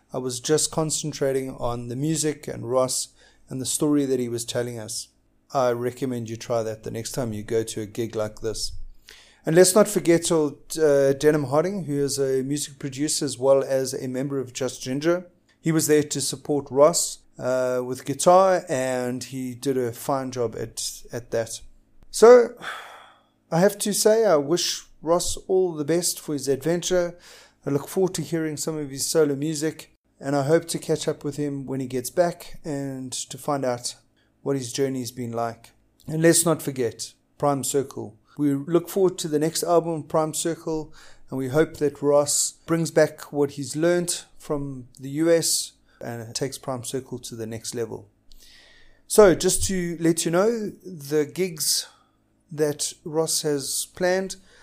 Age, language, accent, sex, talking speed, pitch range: 30-49, English, South African, male, 180 wpm, 130-165 Hz